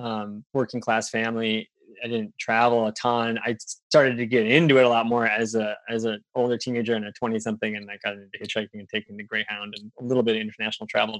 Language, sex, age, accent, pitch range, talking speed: English, male, 20-39, American, 110-135 Hz, 235 wpm